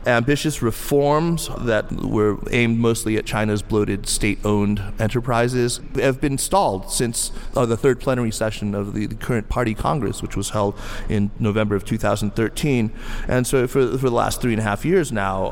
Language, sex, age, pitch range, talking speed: English, male, 30-49, 105-125 Hz, 175 wpm